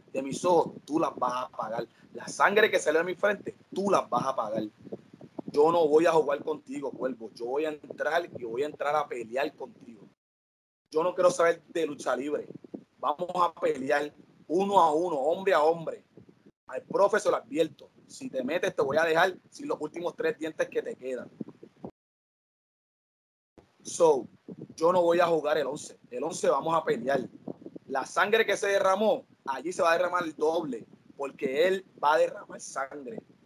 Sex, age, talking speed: male, 30-49, 185 wpm